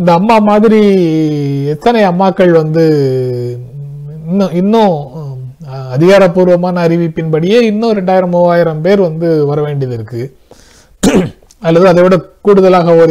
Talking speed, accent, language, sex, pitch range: 95 wpm, native, Tamil, male, 135-180 Hz